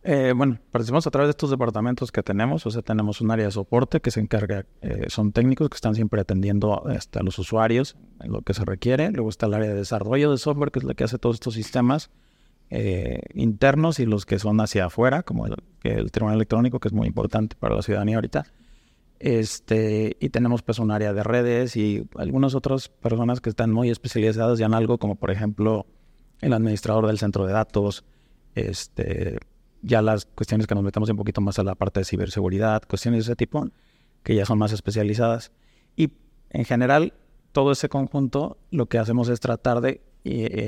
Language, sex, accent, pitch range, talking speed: Spanish, male, Mexican, 105-125 Hz, 200 wpm